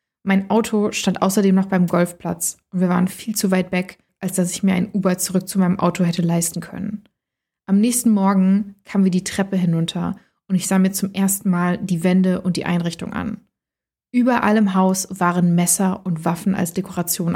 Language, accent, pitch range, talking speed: German, German, 180-205 Hz, 200 wpm